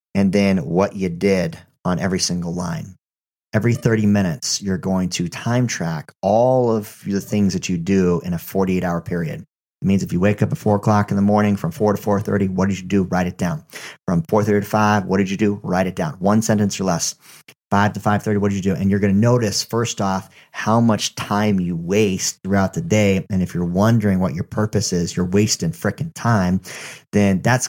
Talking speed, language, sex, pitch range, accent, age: 230 wpm, English, male, 95-110 Hz, American, 40-59